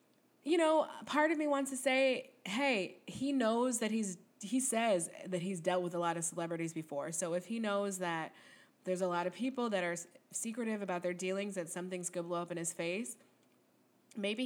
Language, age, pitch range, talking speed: English, 20-39, 190-265 Hz, 205 wpm